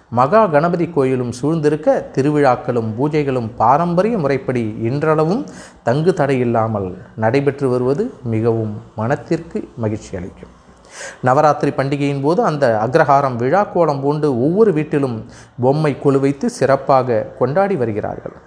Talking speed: 100 wpm